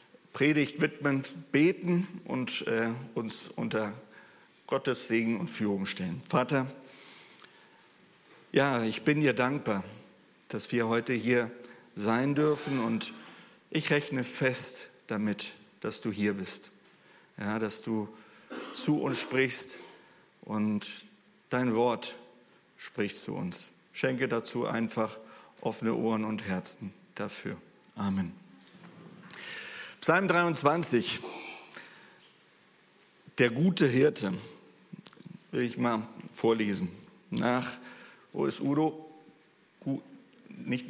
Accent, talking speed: German, 100 wpm